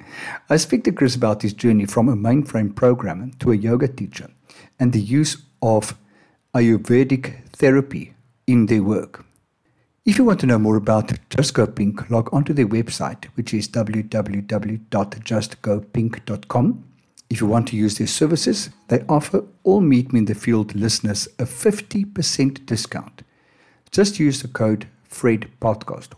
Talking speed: 150 wpm